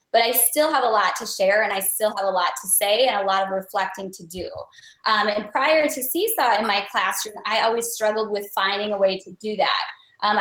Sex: female